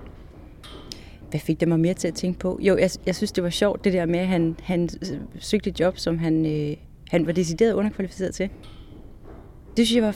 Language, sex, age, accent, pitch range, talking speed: Danish, female, 30-49, native, 135-190 Hz, 215 wpm